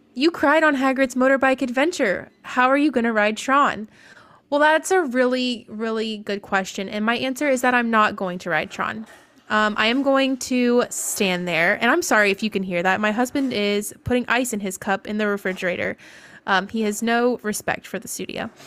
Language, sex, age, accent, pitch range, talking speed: English, female, 20-39, American, 205-255 Hz, 210 wpm